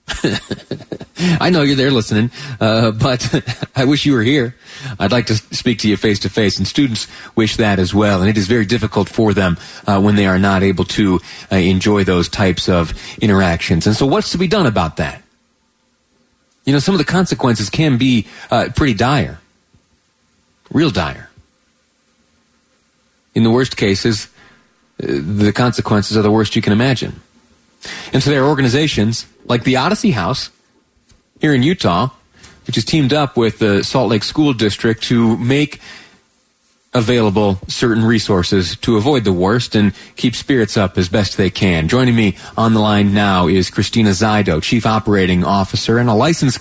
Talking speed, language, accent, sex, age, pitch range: 170 wpm, English, American, male, 30-49, 100-125 Hz